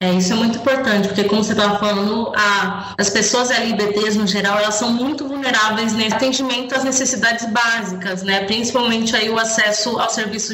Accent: Brazilian